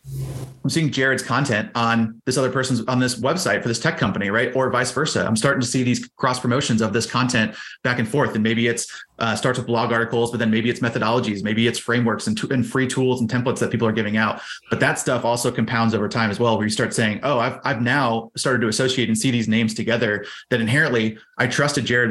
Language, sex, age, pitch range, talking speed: English, male, 30-49, 115-125 Hz, 245 wpm